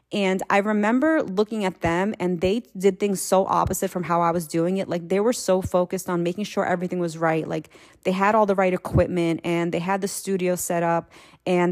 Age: 30-49